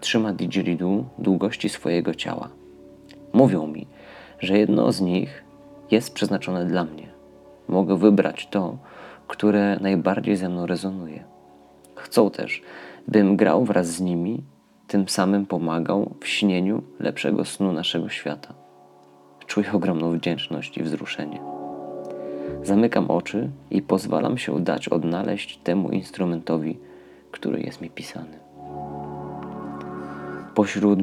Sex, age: male, 30-49